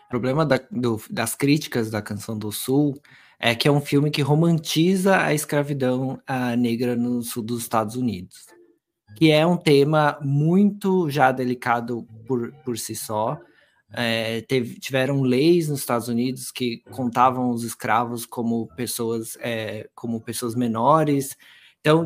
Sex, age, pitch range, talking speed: male, 20-39, 120-155 Hz, 150 wpm